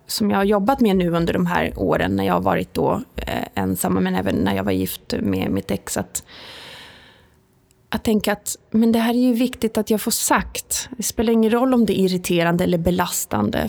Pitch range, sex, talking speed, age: 185-225 Hz, female, 220 wpm, 20-39